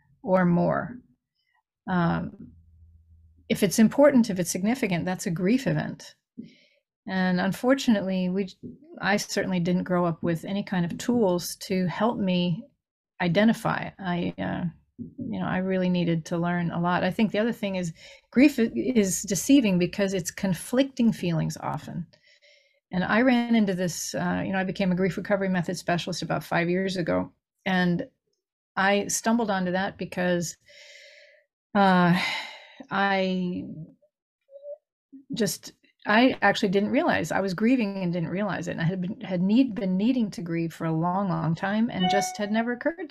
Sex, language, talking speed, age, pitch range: female, English, 160 wpm, 40-59, 175-220 Hz